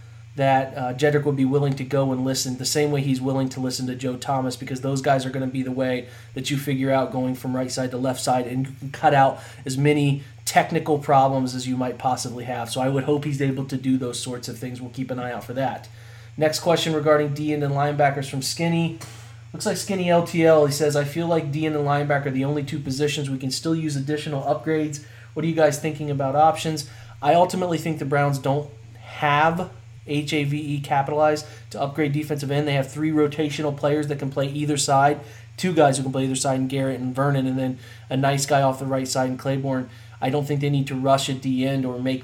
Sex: male